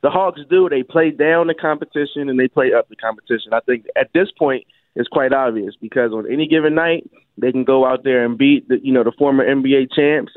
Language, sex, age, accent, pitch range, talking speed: English, male, 20-39, American, 130-150 Hz, 235 wpm